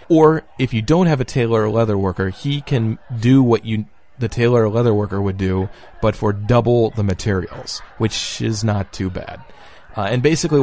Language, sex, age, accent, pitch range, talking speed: English, male, 30-49, American, 100-130 Hz, 200 wpm